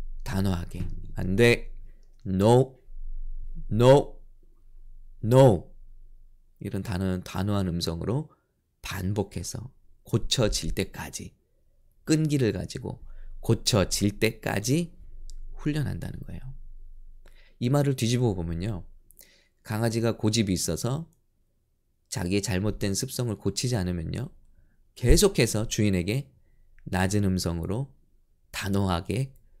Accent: Korean